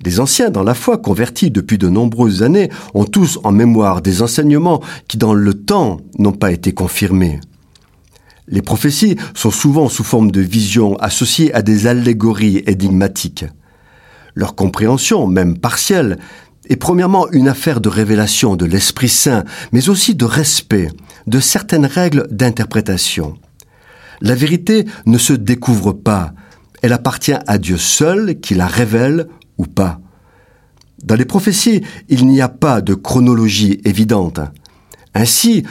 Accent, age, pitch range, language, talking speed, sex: French, 50-69, 105-160 Hz, French, 140 wpm, male